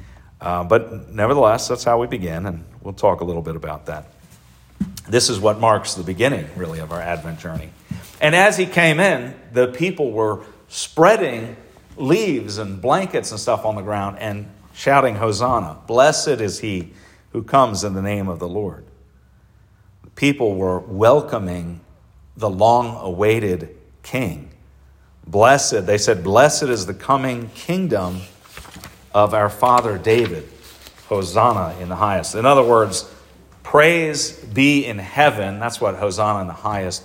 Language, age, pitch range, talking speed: English, 50-69, 90-115 Hz, 150 wpm